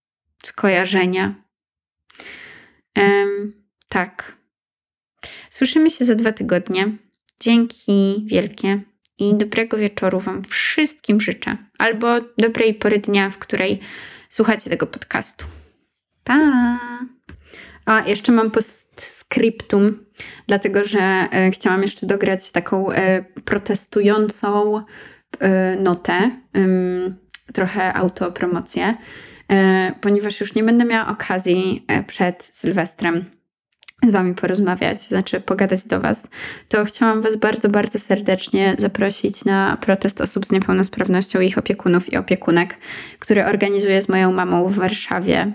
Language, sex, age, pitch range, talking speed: Polish, female, 20-39, 190-220 Hz, 105 wpm